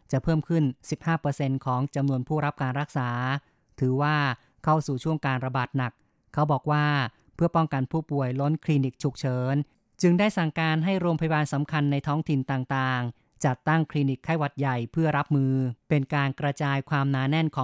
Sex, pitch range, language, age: female, 135-155 Hz, Thai, 20-39